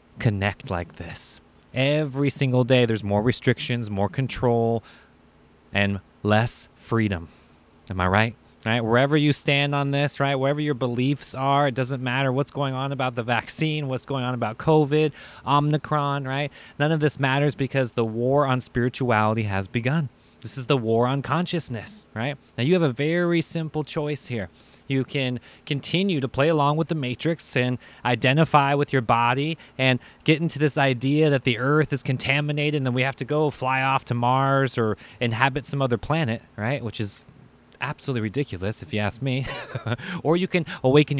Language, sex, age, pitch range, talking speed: English, male, 20-39, 115-145 Hz, 180 wpm